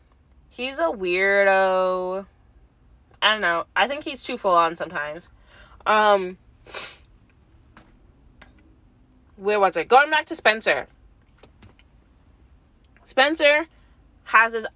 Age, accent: 20-39, American